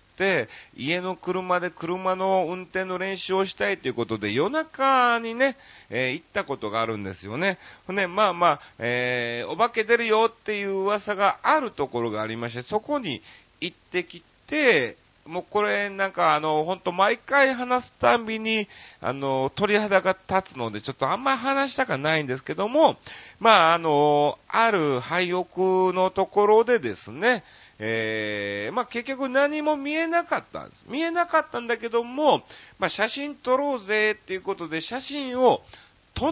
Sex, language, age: male, Japanese, 40-59